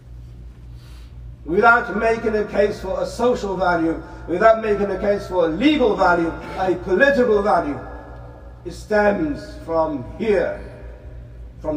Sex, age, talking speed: male, 60-79, 120 wpm